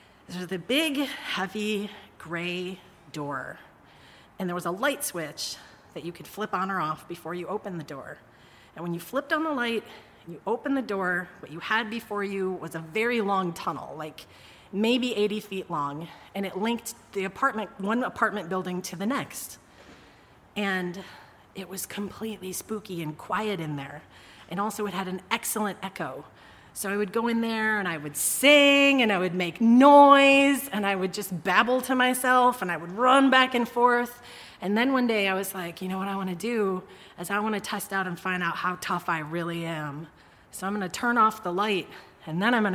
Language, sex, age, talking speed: English, female, 30-49, 210 wpm